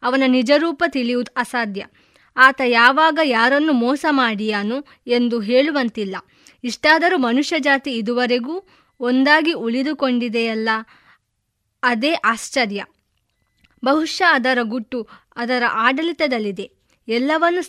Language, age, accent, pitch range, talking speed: Kannada, 20-39, native, 230-295 Hz, 85 wpm